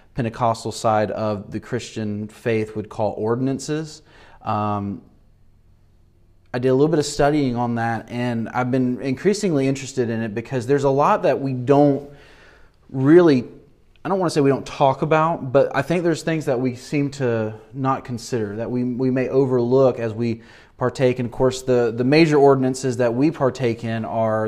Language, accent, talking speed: English, American, 180 wpm